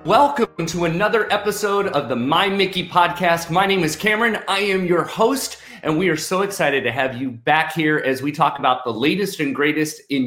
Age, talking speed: 30-49, 210 wpm